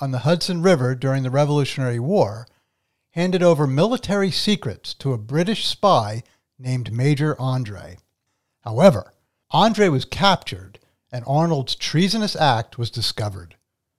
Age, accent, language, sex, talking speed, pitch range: 60-79, American, English, male, 125 wpm, 120-175 Hz